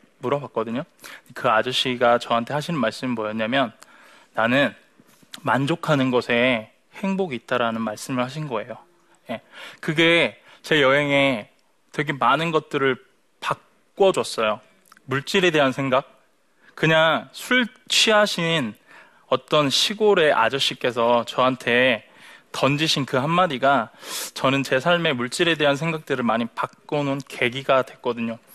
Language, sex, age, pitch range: Korean, male, 20-39, 120-165 Hz